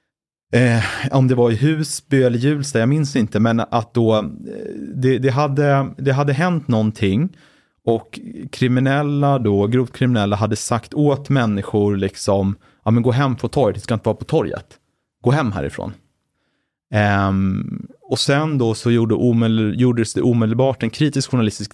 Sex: male